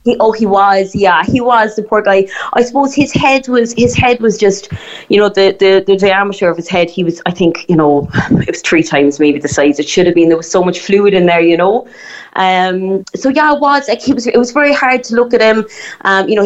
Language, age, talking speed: English, 20-39, 265 wpm